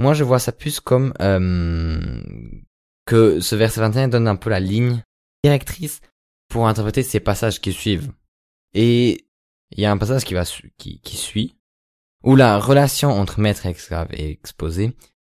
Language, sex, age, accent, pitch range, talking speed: French, male, 20-39, French, 85-115 Hz, 170 wpm